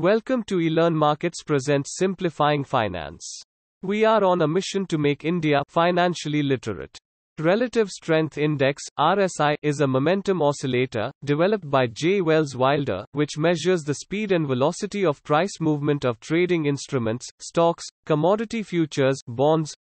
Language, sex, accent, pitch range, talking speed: English, male, Indian, 135-180 Hz, 140 wpm